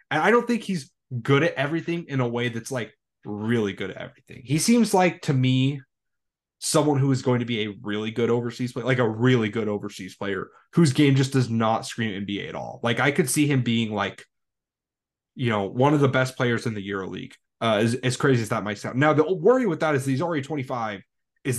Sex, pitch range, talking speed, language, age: male, 115-150 Hz, 230 wpm, English, 20-39